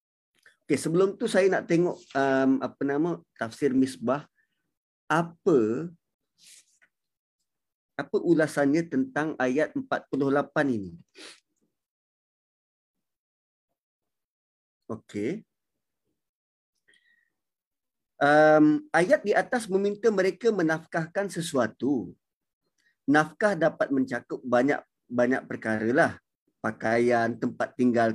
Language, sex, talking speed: Malay, male, 80 wpm